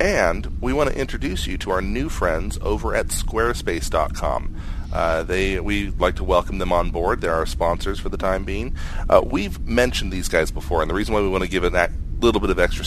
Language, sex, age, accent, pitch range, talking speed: English, male, 30-49, American, 80-100 Hz, 230 wpm